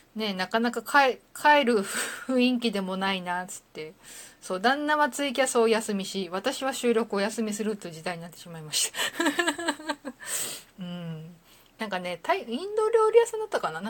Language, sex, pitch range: Japanese, female, 180-260 Hz